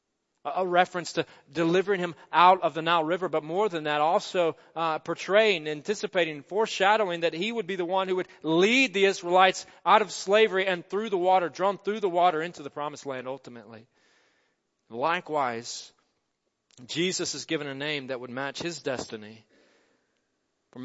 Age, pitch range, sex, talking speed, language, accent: 40-59, 155-210 Hz, male, 165 wpm, English, American